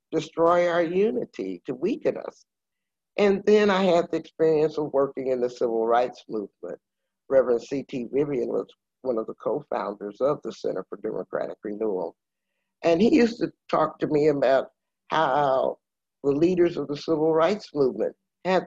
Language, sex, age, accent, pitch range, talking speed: English, male, 60-79, American, 115-175 Hz, 160 wpm